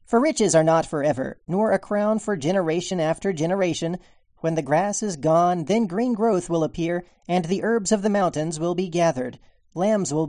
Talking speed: 190 wpm